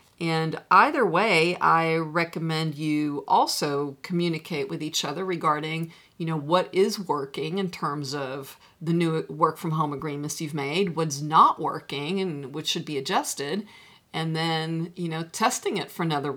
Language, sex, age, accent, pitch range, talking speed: English, female, 50-69, American, 160-215 Hz, 160 wpm